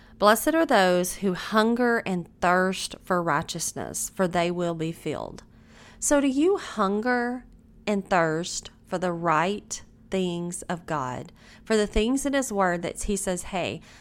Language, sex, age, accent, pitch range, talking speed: English, female, 30-49, American, 170-215 Hz, 155 wpm